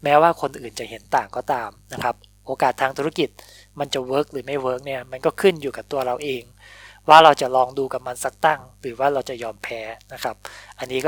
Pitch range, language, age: 110-145 Hz, Thai, 20-39